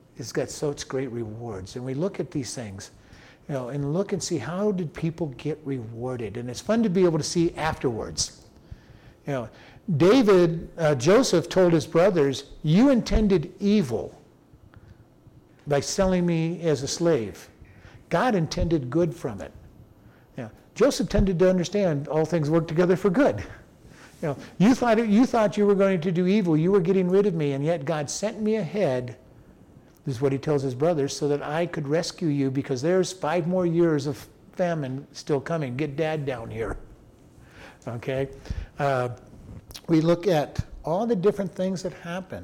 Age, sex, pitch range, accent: 50-69, male, 140-185 Hz, American